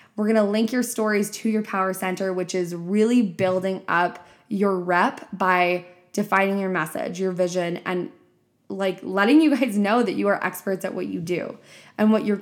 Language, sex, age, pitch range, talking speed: English, female, 20-39, 185-220 Hz, 195 wpm